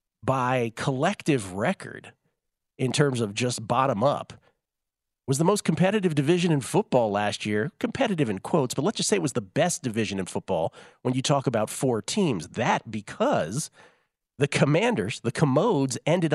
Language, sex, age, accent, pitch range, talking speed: English, male, 40-59, American, 110-150 Hz, 160 wpm